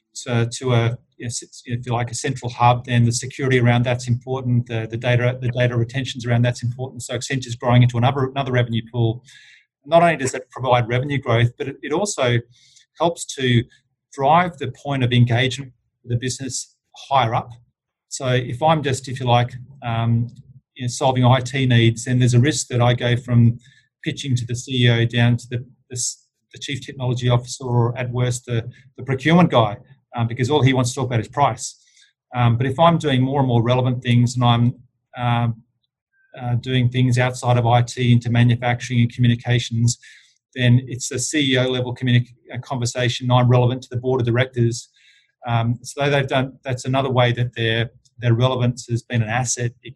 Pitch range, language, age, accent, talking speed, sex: 120-130 Hz, English, 40-59, Australian, 190 wpm, male